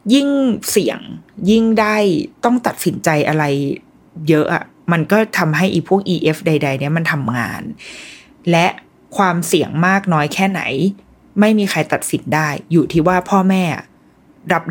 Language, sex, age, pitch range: Thai, female, 20-39, 165-220 Hz